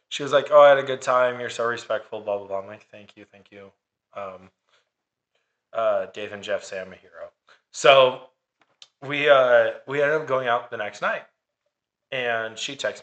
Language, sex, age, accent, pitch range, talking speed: English, male, 20-39, American, 110-145 Hz, 205 wpm